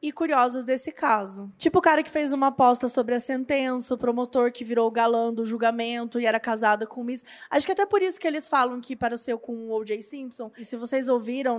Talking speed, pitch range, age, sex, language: 235 wpm, 245-320 Hz, 20-39, female, Portuguese